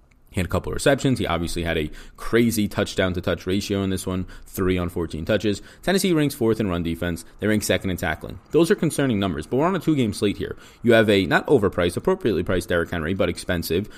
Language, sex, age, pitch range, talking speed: English, male, 30-49, 90-110 Hz, 235 wpm